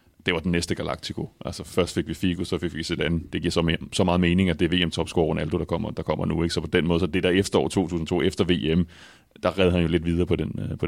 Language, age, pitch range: Danish, 30-49, 85-95 Hz